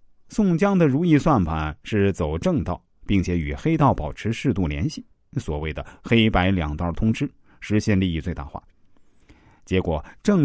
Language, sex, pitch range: Chinese, male, 85-135 Hz